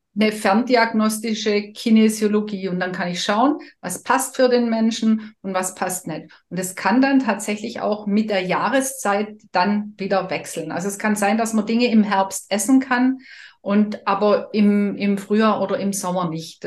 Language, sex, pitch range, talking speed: German, female, 210-250 Hz, 175 wpm